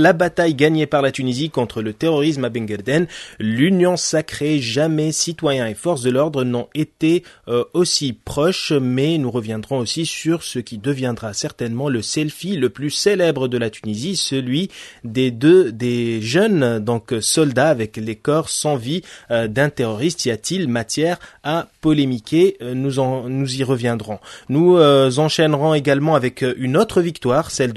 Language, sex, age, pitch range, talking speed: French, male, 20-39, 120-155 Hz, 160 wpm